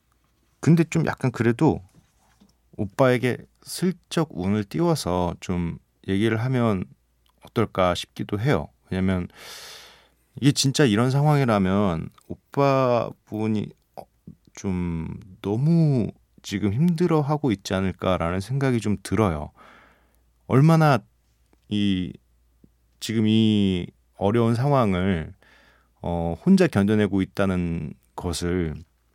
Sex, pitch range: male, 90-135 Hz